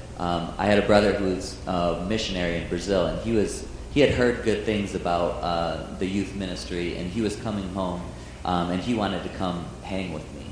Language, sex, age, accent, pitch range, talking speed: English, male, 40-59, American, 85-100 Hz, 215 wpm